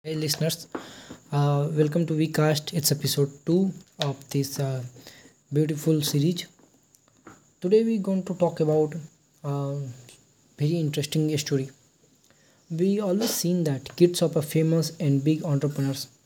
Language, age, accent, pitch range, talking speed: English, 20-39, Indian, 140-165 Hz, 135 wpm